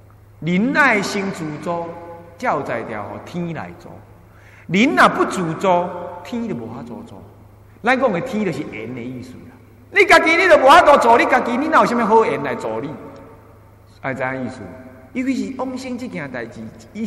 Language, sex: Chinese, male